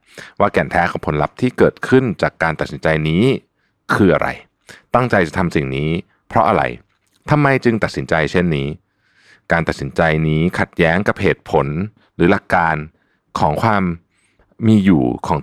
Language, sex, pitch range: Thai, male, 80-100 Hz